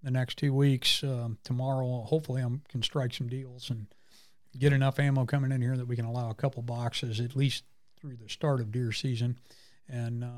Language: English